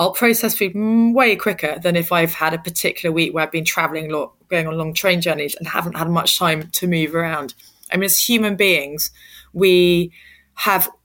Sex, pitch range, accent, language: female, 160-205 Hz, British, English